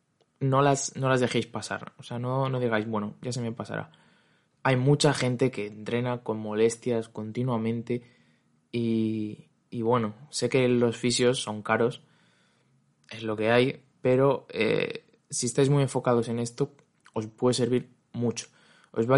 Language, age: Spanish, 20-39